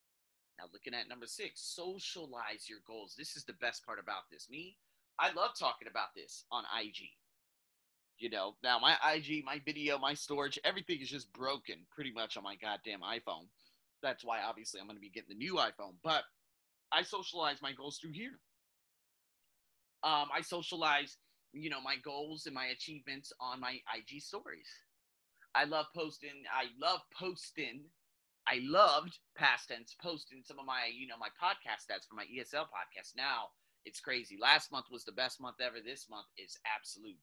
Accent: American